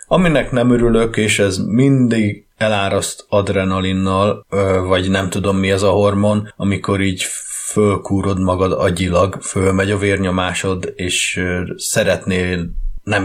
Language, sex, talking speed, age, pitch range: Hungarian, male, 120 wpm, 30-49, 90-105 Hz